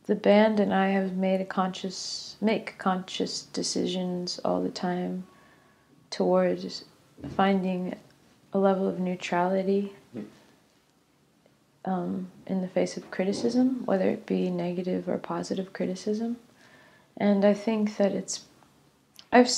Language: English